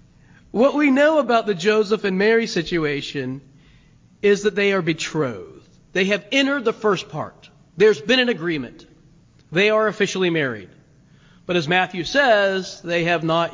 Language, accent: English, American